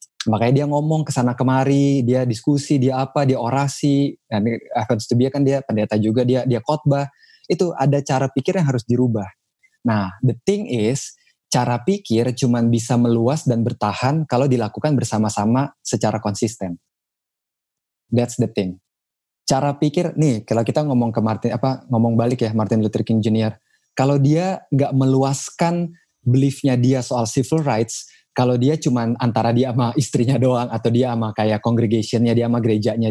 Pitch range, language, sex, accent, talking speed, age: 110-135 Hz, Indonesian, male, native, 160 wpm, 20-39